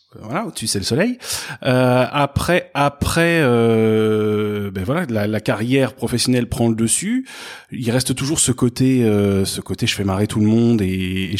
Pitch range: 105-130 Hz